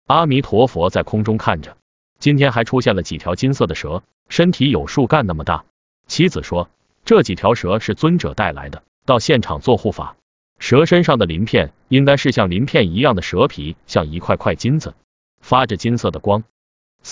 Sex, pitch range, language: male, 90-135 Hz, Chinese